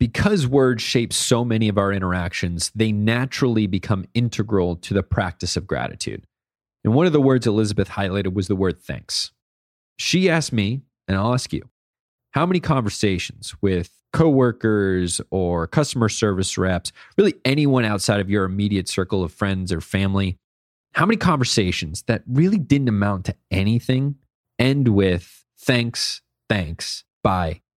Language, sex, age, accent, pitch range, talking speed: English, male, 30-49, American, 95-125 Hz, 150 wpm